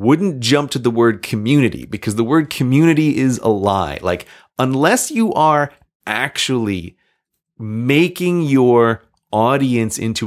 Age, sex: 30-49, male